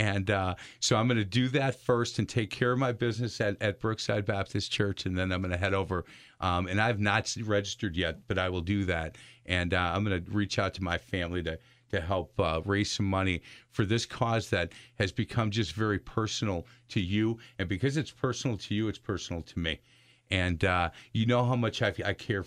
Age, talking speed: 50-69, 230 wpm